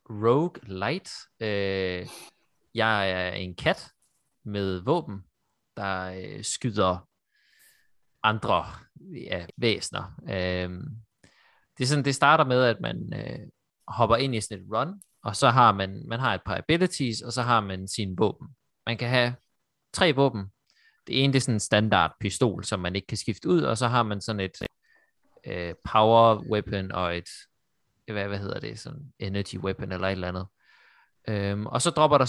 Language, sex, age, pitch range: Danish, male, 30-49, 95-125 Hz